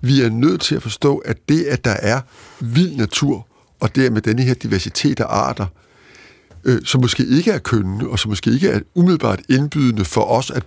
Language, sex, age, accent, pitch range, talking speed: Danish, male, 60-79, native, 115-150 Hz, 215 wpm